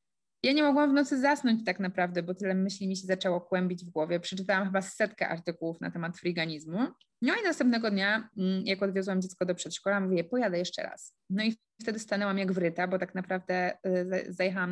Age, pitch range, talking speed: 20-39, 180-225 Hz, 190 wpm